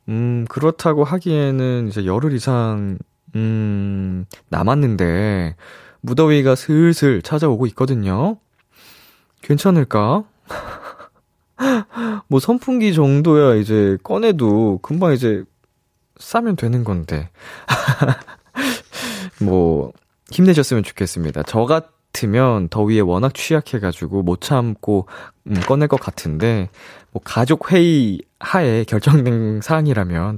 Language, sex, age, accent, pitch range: Korean, male, 20-39, native, 105-160 Hz